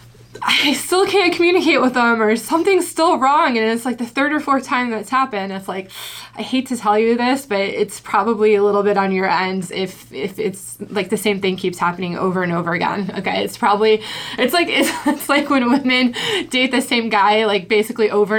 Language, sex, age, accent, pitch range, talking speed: English, female, 20-39, American, 200-255 Hz, 220 wpm